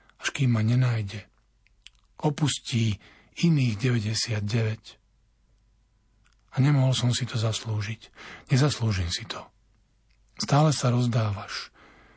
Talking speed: 95 wpm